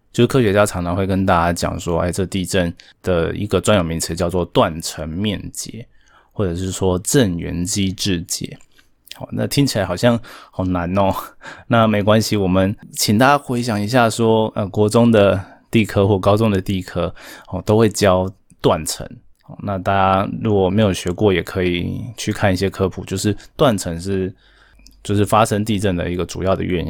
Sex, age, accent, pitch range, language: male, 20-39, native, 90-110 Hz, Chinese